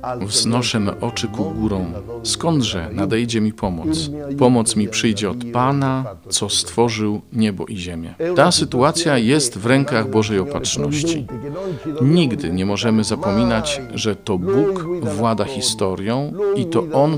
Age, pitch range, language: 40-59, 105-145 Hz, Polish